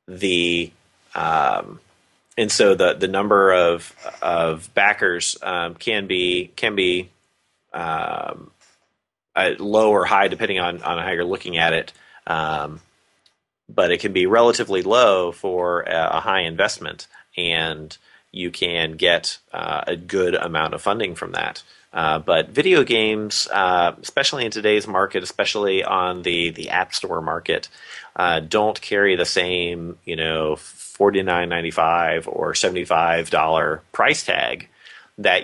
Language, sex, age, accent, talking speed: English, male, 30-49, American, 150 wpm